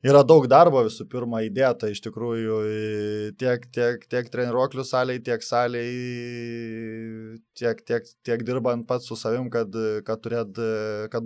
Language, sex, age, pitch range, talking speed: English, male, 20-39, 110-120 Hz, 140 wpm